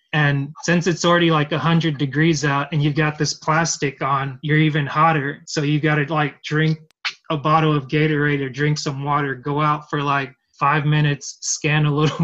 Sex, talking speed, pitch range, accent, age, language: male, 195 wpm, 140-155 Hz, American, 20-39, English